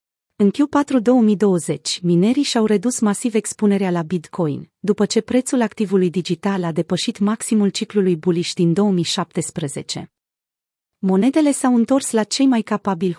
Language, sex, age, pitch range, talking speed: Romanian, female, 30-49, 175-220 Hz, 130 wpm